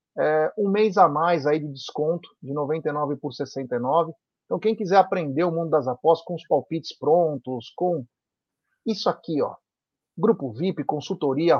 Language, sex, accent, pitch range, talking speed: Portuguese, male, Brazilian, 155-200 Hz, 160 wpm